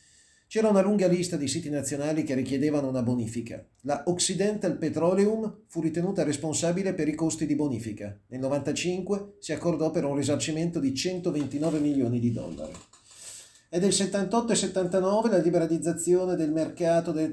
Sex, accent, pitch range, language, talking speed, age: male, native, 140-175 Hz, Italian, 150 wpm, 40-59